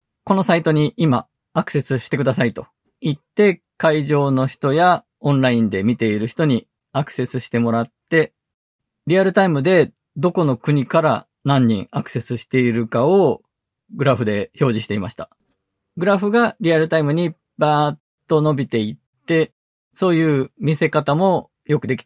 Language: Japanese